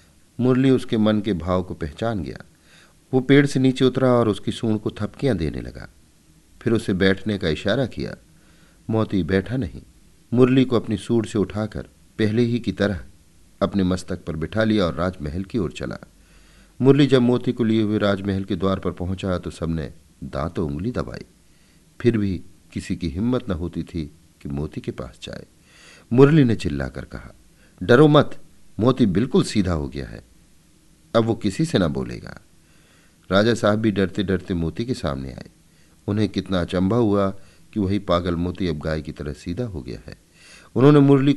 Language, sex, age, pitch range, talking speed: Hindi, male, 50-69, 80-115 Hz, 180 wpm